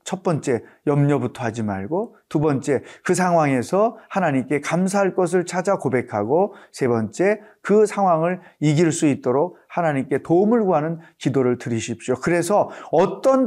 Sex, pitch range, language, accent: male, 140-195 Hz, Korean, native